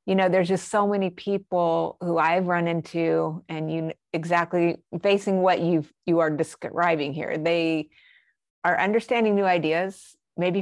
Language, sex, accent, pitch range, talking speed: English, female, American, 165-190 Hz, 155 wpm